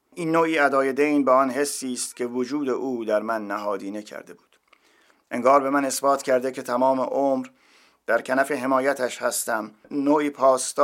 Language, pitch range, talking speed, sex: Persian, 125-145 Hz, 165 wpm, male